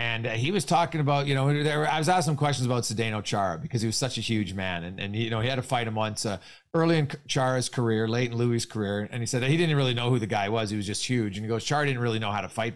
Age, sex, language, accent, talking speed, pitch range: 40-59, male, English, American, 315 wpm, 115-150 Hz